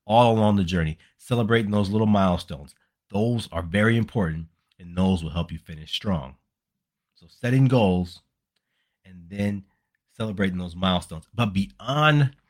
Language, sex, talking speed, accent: English, male, 140 wpm, American